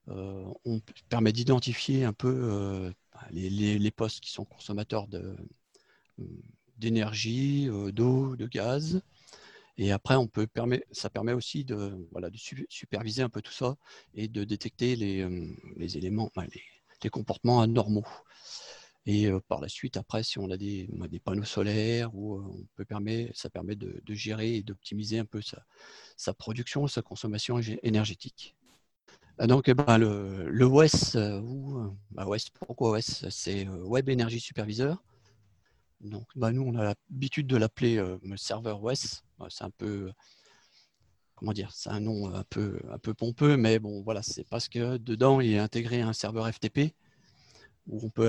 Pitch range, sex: 105-120 Hz, male